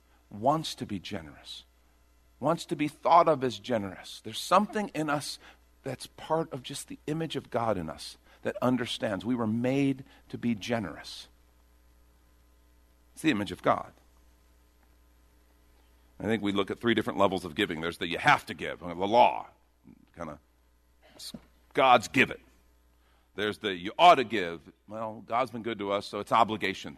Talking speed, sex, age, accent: 170 wpm, male, 50-69, American